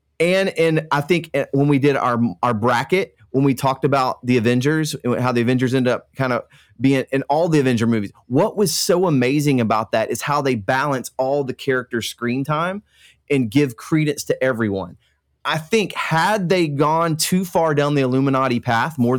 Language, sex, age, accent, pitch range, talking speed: English, male, 30-49, American, 125-160 Hz, 190 wpm